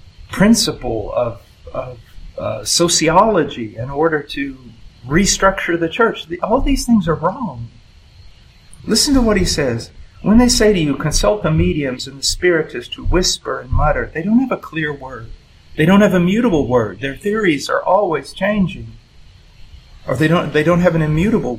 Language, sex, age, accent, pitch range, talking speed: English, male, 40-59, American, 115-175 Hz, 165 wpm